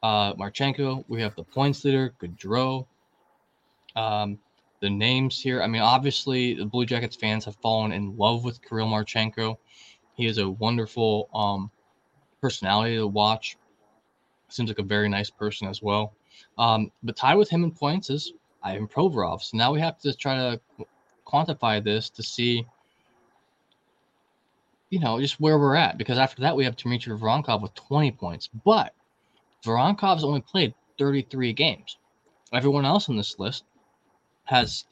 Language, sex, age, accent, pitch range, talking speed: English, male, 20-39, American, 110-140 Hz, 155 wpm